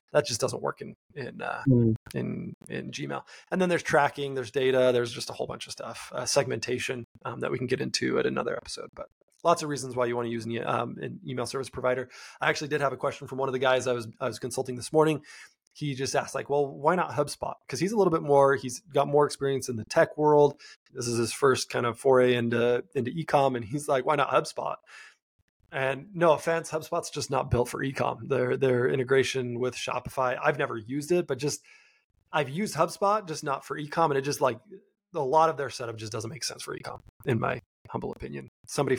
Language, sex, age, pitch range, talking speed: English, male, 20-39, 125-150 Hz, 235 wpm